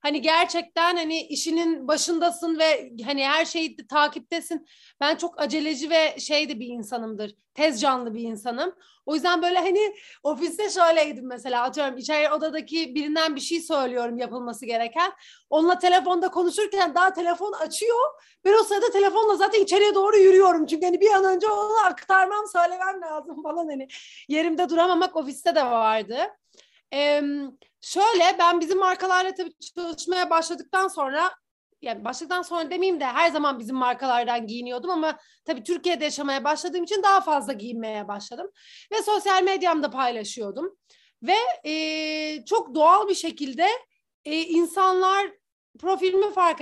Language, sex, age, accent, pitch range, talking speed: Turkish, female, 30-49, native, 290-360 Hz, 140 wpm